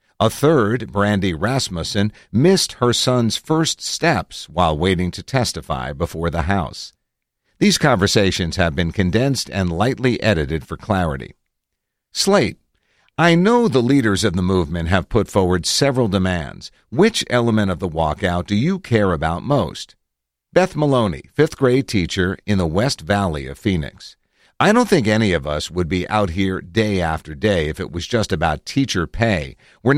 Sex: male